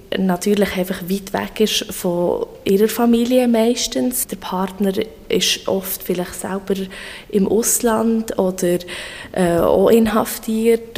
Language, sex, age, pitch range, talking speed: German, female, 20-39, 180-210 Hz, 115 wpm